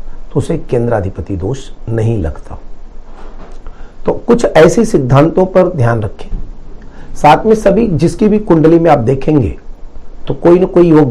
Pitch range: 115-170 Hz